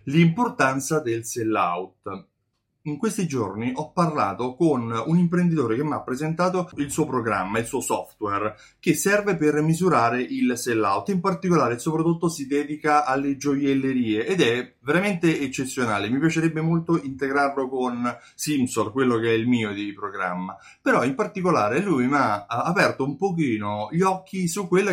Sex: male